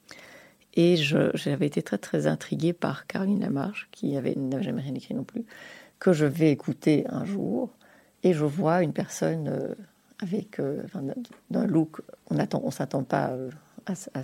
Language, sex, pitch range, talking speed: French, female, 150-200 Hz, 170 wpm